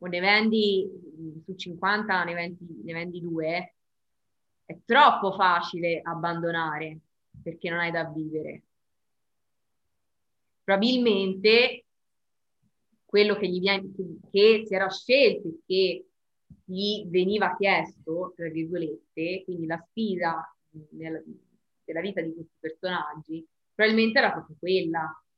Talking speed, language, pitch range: 110 wpm, Italian, 170-215 Hz